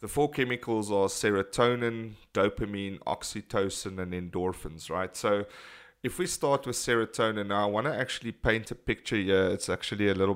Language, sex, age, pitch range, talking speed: English, male, 30-49, 100-115 Hz, 160 wpm